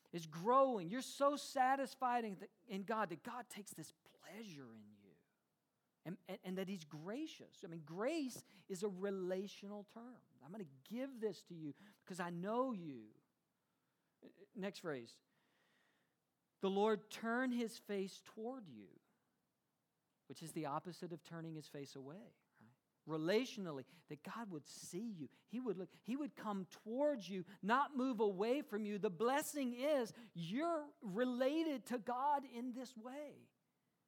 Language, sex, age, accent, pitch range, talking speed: English, male, 50-69, American, 180-240 Hz, 150 wpm